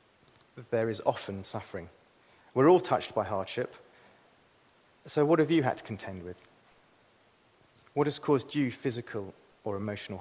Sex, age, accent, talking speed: male, 40-59, British, 140 wpm